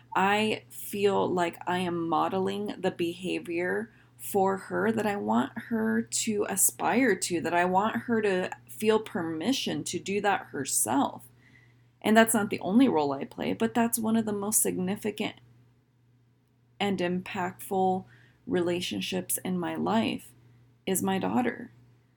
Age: 20-39